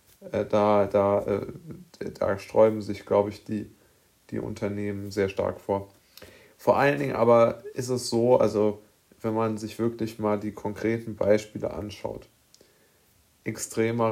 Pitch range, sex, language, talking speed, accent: 105-115 Hz, male, German, 130 wpm, German